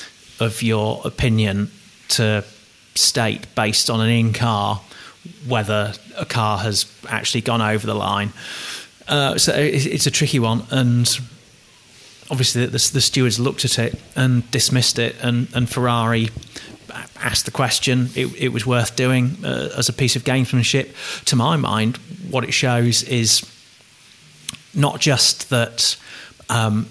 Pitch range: 110-125 Hz